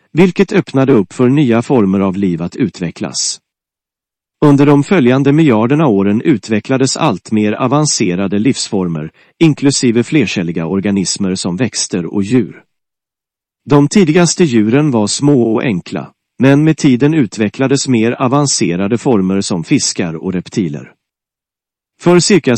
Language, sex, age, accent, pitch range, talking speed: English, male, 40-59, Swedish, 100-145 Hz, 125 wpm